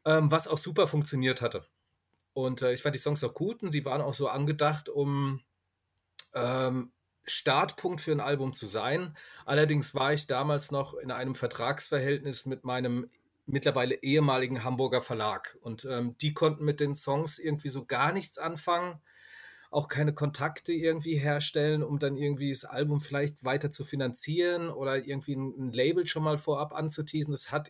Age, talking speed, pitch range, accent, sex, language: 30-49, 160 wpm, 130-155 Hz, German, male, German